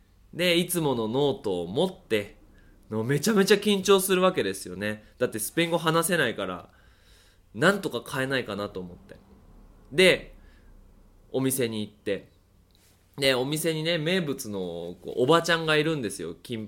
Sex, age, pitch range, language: male, 20-39, 95-155 Hz, Japanese